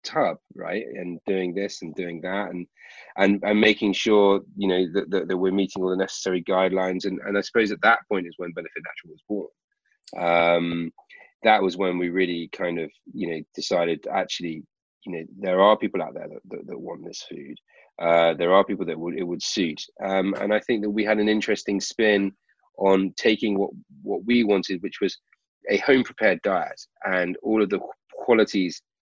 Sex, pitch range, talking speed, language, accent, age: male, 90-100 Hz, 205 wpm, English, British, 30-49